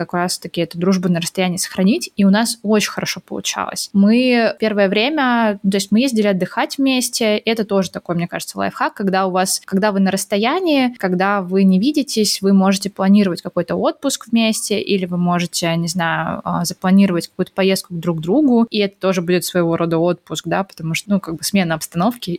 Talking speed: 190 wpm